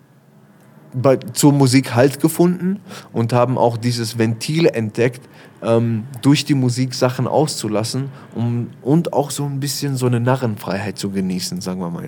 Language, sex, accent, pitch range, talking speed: German, male, German, 105-135 Hz, 150 wpm